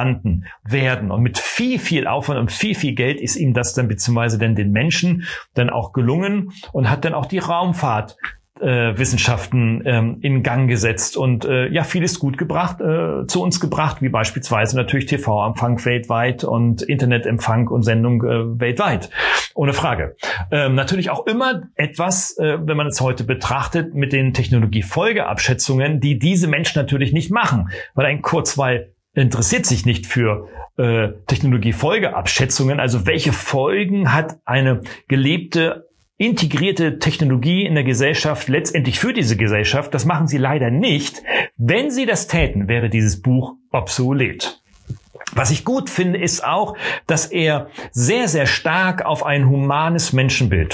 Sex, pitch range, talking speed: male, 120-160 Hz, 140 wpm